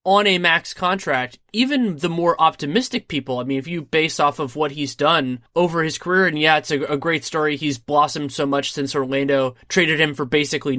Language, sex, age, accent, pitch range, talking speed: English, male, 20-39, American, 135-175 Hz, 215 wpm